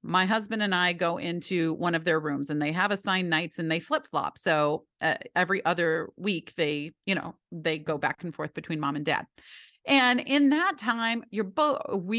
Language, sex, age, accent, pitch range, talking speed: English, female, 30-49, American, 170-225 Hz, 210 wpm